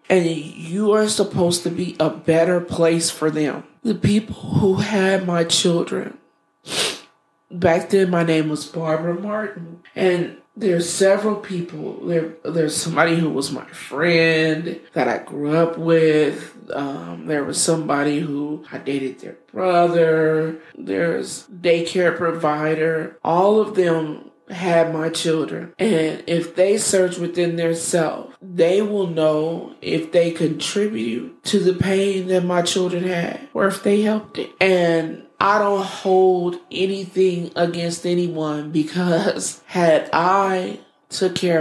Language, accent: English, American